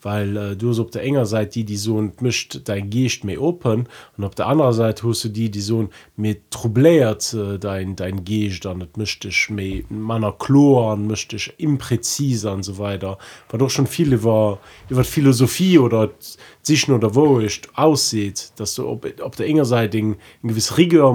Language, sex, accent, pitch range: German, male, German, 105-130 Hz